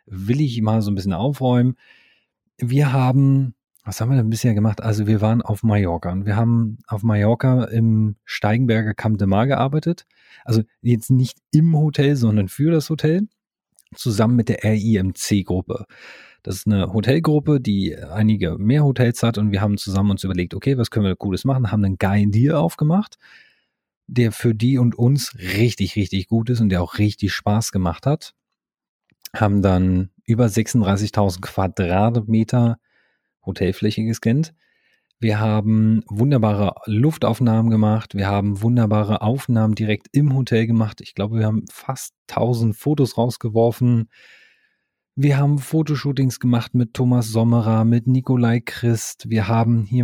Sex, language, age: male, German, 40-59